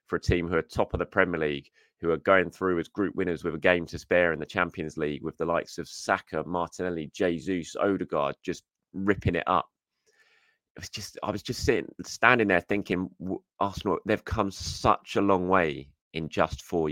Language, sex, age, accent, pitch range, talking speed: English, male, 20-39, British, 80-100 Hz, 200 wpm